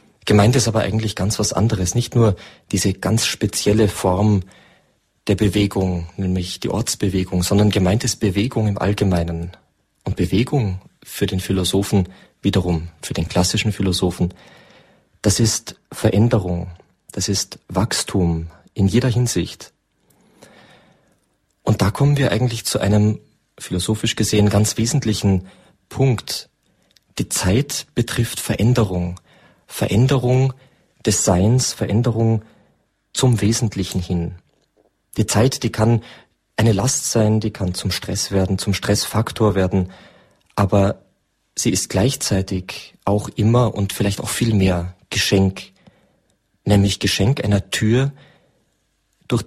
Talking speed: 120 wpm